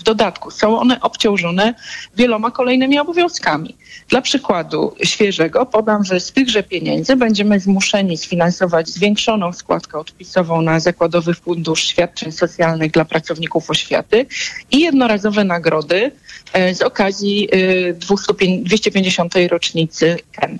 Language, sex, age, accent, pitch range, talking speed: Polish, female, 40-59, native, 175-225 Hz, 110 wpm